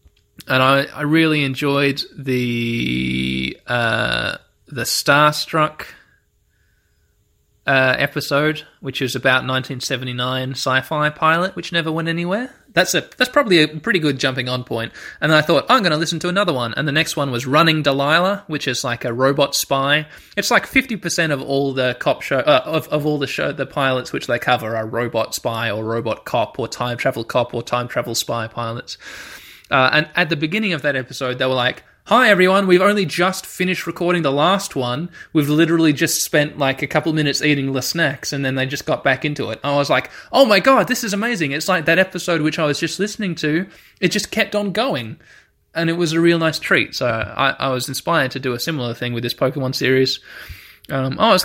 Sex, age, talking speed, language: male, 20-39, 210 wpm, English